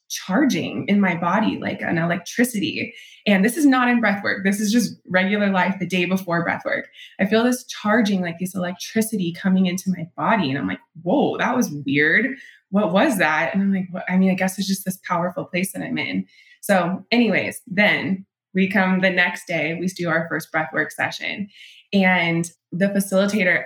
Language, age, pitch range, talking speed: English, 20-39, 175-200 Hz, 200 wpm